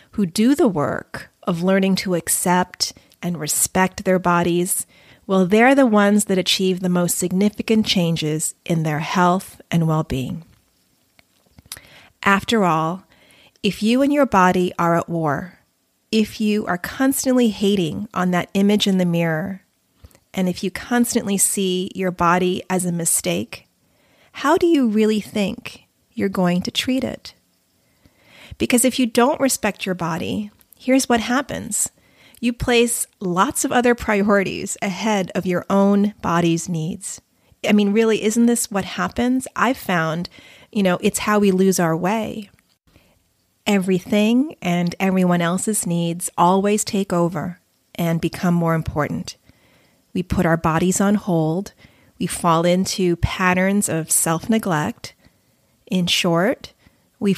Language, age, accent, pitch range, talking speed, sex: English, 30-49, American, 175-215 Hz, 140 wpm, female